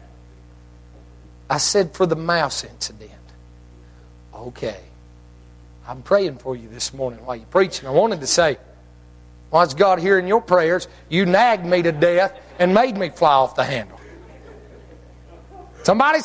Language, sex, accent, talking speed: English, male, American, 145 wpm